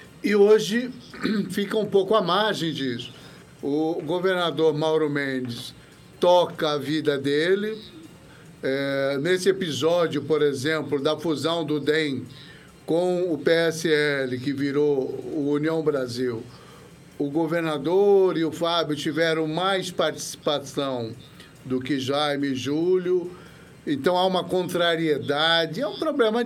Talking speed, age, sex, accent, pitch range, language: 120 wpm, 60-79, male, Brazilian, 145-185 Hz, Portuguese